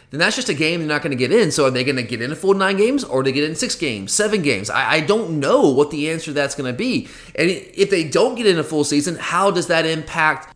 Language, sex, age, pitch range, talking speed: English, male, 30-49, 150-200 Hz, 315 wpm